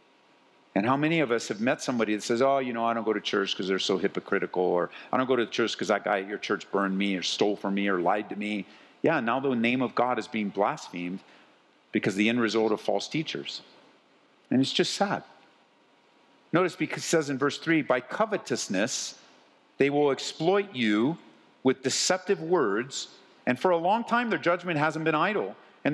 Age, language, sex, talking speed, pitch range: 50-69, English, male, 210 wpm, 110-155 Hz